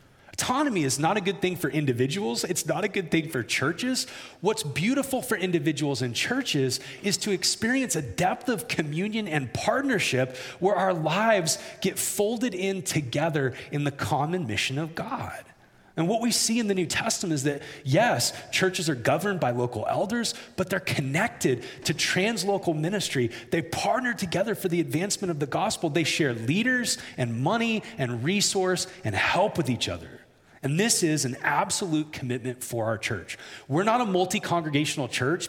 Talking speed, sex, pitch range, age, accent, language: 170 wpm, male, 140-195 Hz, 30-49, American, English